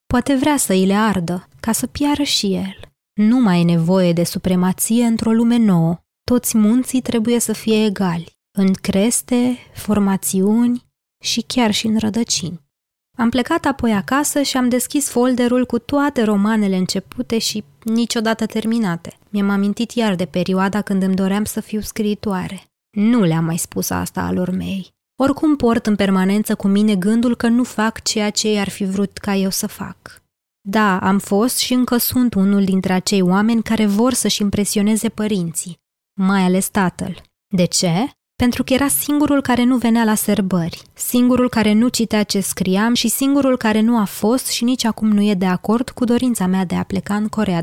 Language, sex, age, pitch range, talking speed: Romanian, female, 20-39, 190-235 Hz, 180 wpm